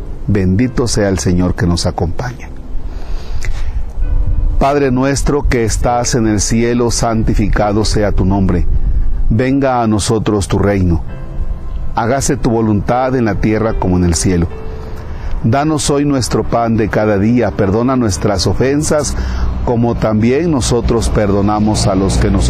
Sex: male